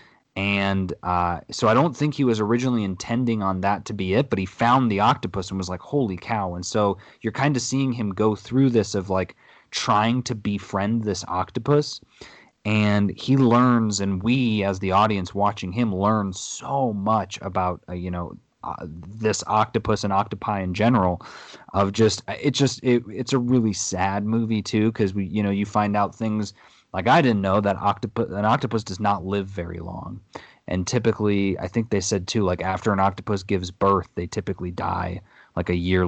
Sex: male